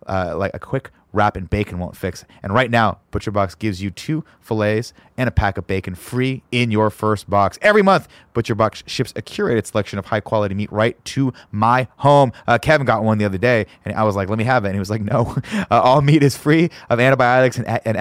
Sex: male